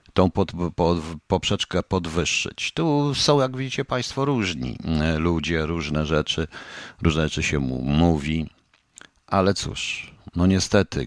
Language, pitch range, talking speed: Polish, 75-90 Hz, 110 wpm